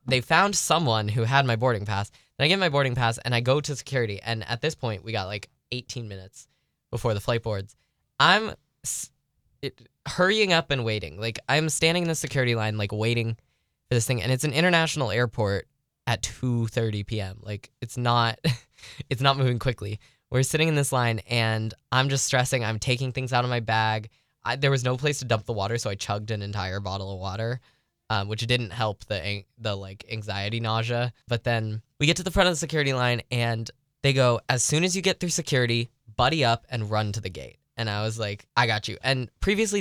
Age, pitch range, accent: 10-29, 110-130 Hz, American